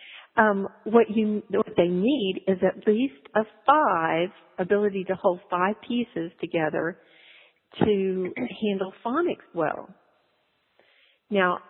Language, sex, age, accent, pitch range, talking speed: English, female, 50-69, American, 185-225 Hz, 110 wpm